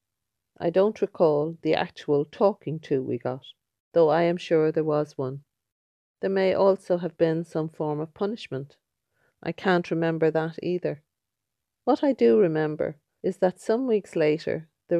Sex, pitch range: female, 150-180 Hz